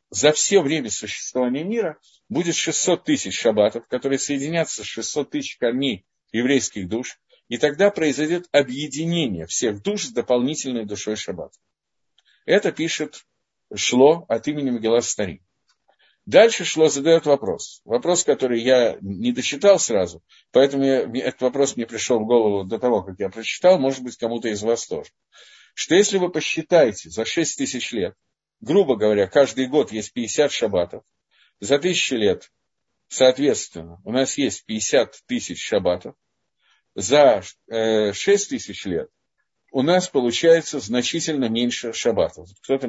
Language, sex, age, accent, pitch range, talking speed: Russian, male, 50-69, native, 115-160 Hz, 135 wpm